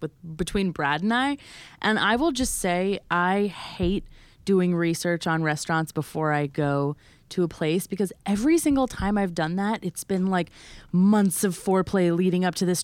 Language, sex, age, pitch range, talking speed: English, female, 20-39, 160-220 Hz, 180 wpm